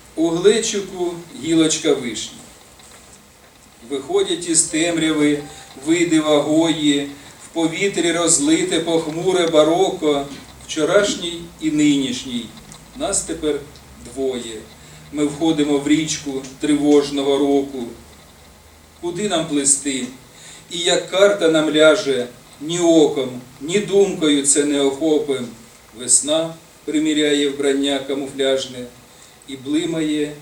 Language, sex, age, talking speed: Ukrainian, male, 40-59, 95 wpm